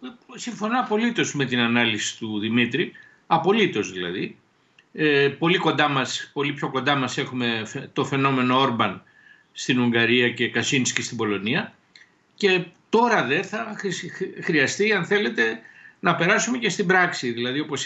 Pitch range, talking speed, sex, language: 130-210 Hz, 130 wpm, male, Greek